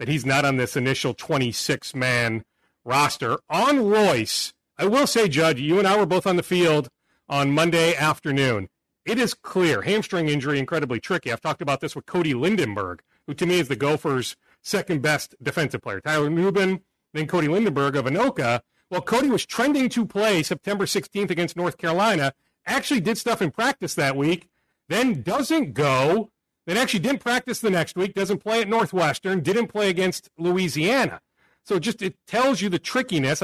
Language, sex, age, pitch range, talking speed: English, male, 40-59, 150-200 Hz, 180 wpm